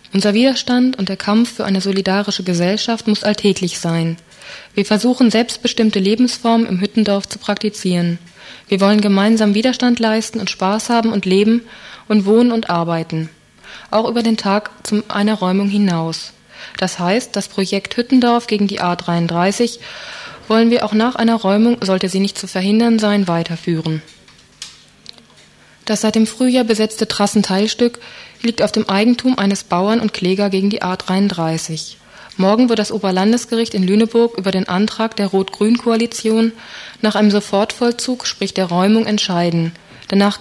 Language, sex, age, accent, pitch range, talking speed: German, female, 20-39, German, 195-230 Hz, 150 wpm